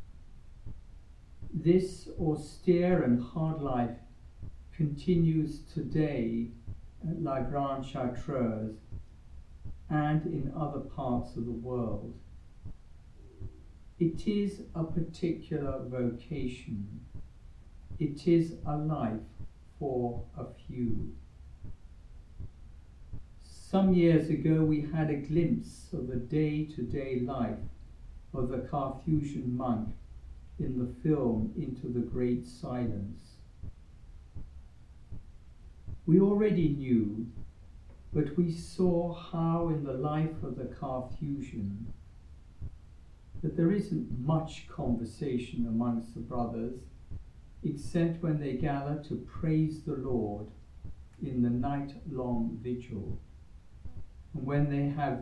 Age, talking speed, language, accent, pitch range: 60-79, 100 wpm, English, British, 105-155 Hz